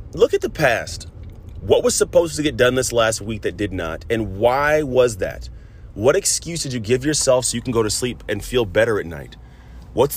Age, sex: 30-49, male